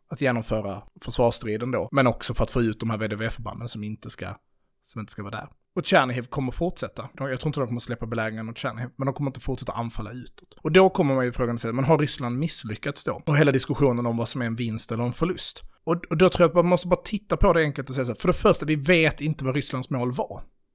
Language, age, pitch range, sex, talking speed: Swedish, 30-49, 115-140 Hz, male, 265 wpm